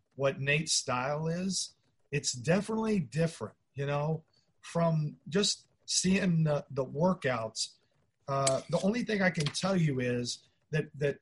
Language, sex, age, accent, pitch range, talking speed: English, male, 50-69, American, 135-170 Hz, 140 wpm